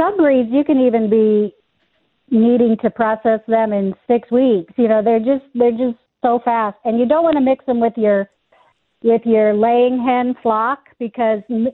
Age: 50-69